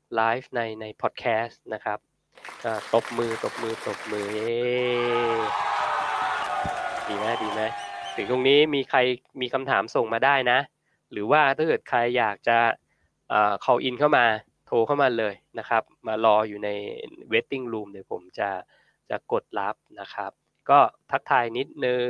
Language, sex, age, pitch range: Thai, male, 20-39, 110-135 Hz